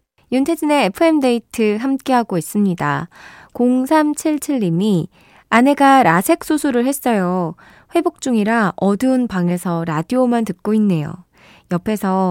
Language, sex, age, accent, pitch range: Korean, female, 20-39, native, 175-270 Hz